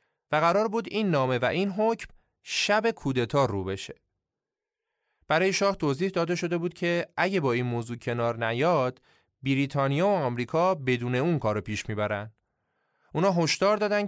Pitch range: 115-185 Hz